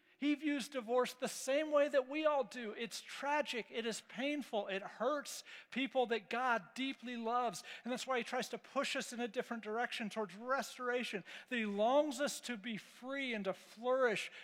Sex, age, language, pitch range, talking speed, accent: male, 50-69, English, 190-250 Hz, 190 wpm, American